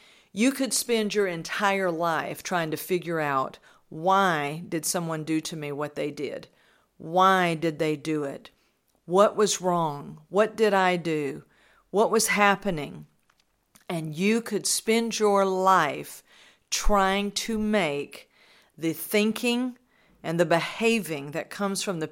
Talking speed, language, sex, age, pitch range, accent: 140 wpm, English, female, 50-69, 165-205 Hz, American